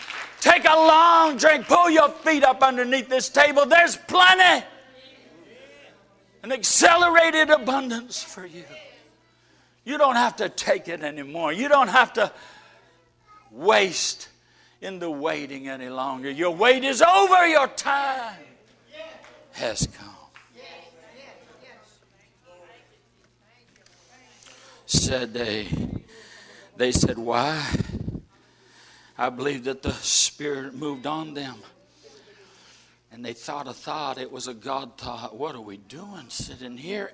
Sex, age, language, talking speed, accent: male, 60-79, English, 115 wpm, American